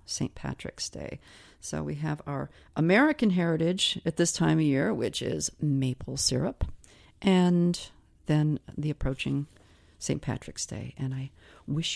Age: 50-69